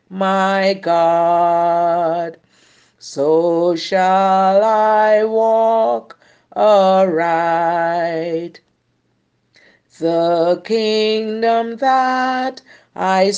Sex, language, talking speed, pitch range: female, English, 50 wpm, 170-250 Hz